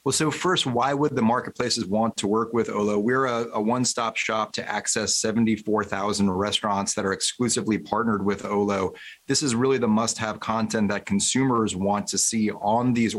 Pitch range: 105-125 Hz